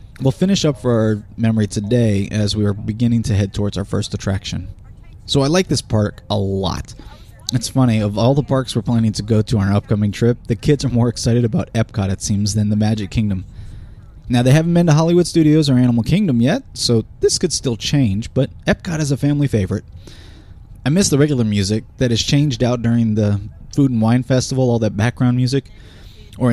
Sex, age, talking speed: male, 20-39, 215 wpm